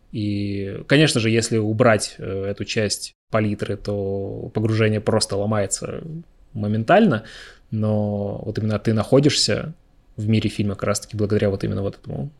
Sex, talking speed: male, 135 wpm